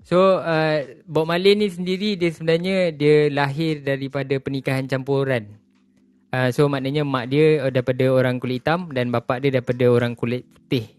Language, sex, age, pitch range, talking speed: Malay, male, 20-39, 135-160 Hz, 160 wpm